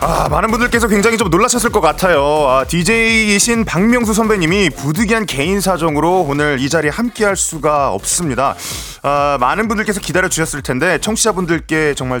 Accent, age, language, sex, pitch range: native, 30-49, Korean, male, 140-230 Hz